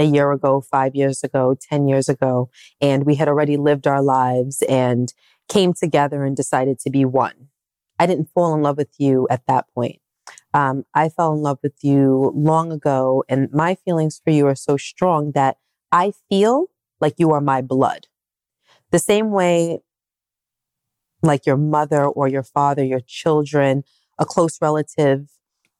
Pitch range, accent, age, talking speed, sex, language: 140-170 Hz, American, 30-49, 170 wpm, female, English